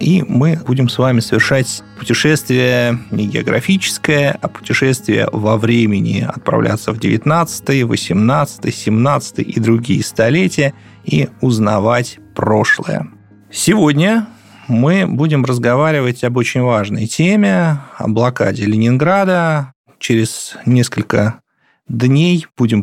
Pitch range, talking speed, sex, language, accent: 110-140 Hz, 105 wpm, male, Russian, native